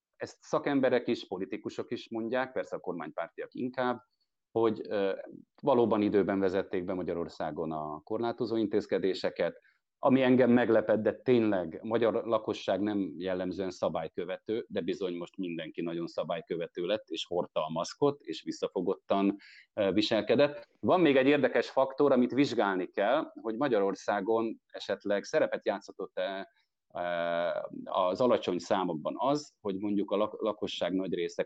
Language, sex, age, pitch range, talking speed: Hungarian, male, 30-49, 100-140 Hz, 130 wpm